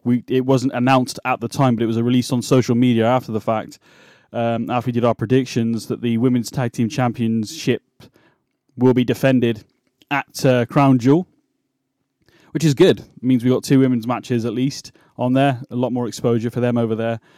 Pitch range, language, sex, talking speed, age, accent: 115-130 Hz, English, male, 205 wpm, 20-39, British